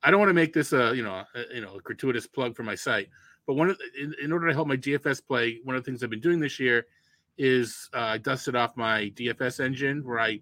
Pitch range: 120-145 Hz